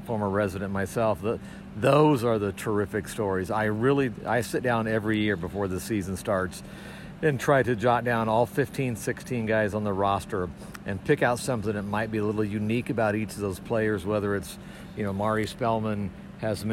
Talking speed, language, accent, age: 195 wpm, English, American, 50-69